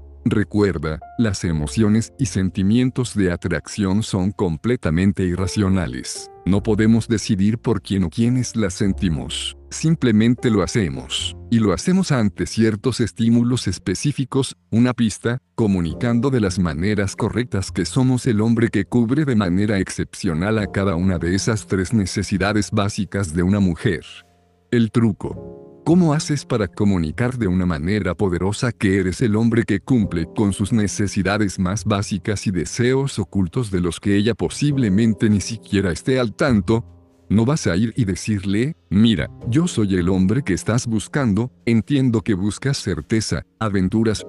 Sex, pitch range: male, 95-115 Hz